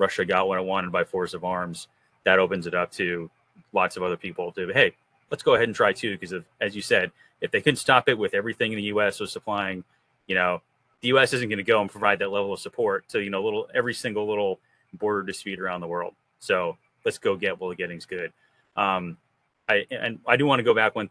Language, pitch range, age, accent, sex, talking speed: English, 95-115 Hz, 30-49, American, male, 250 wpm